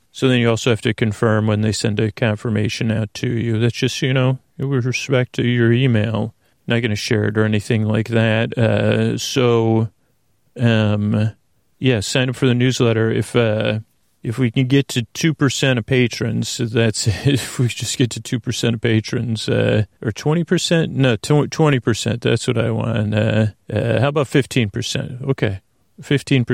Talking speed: 175 wpm